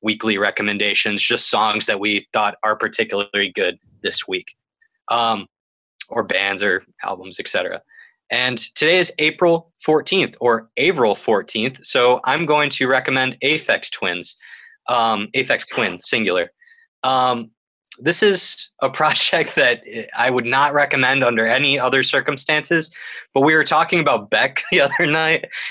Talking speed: 140 wpm